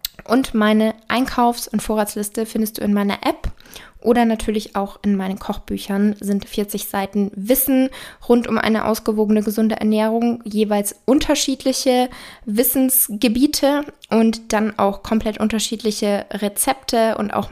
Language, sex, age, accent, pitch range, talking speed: German, female, 20-39, German, 210-240 Hz, 125 wpm